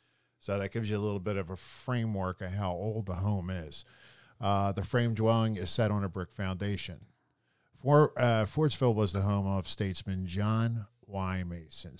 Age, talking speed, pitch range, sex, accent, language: 50-69, 180 wpm, 95-115 Hz, male, American, English